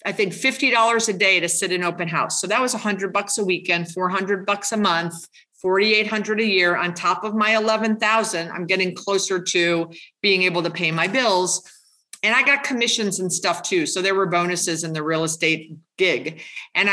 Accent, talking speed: American, 200 wpm